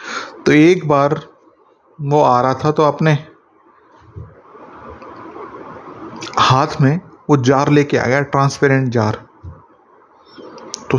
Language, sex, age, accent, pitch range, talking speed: Hindi, male, 30-49, native, 120-150 Hz, 100 wpm